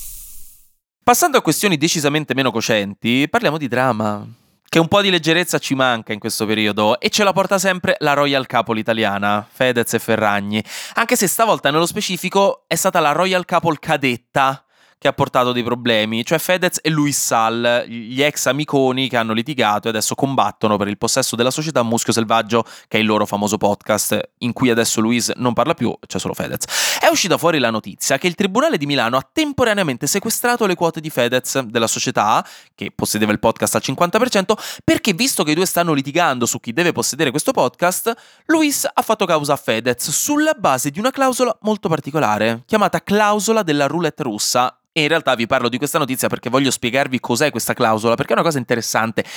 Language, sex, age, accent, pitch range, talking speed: Italian, male, 20-39, native, 115-175 Hz, 195 wpm